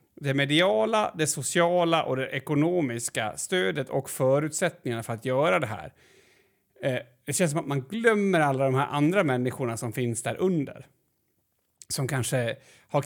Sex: male